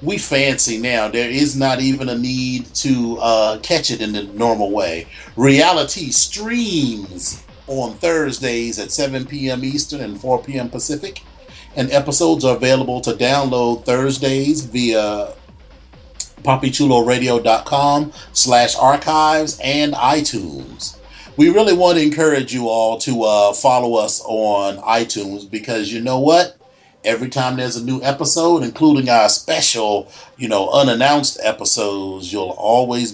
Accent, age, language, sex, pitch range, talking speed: American, 30-49, English, male, 110-135 Hz, 135 wpm